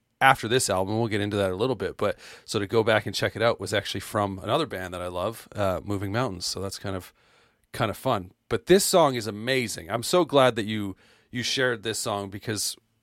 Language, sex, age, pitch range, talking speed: English, male, 40-59, 100-120 Hz, 240 wpm